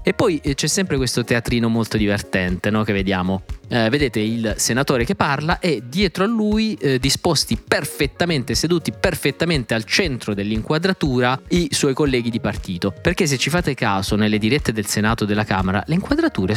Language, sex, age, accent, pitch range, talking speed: Italian, male, 20-39, native, 105-130 Hz, 170 wpm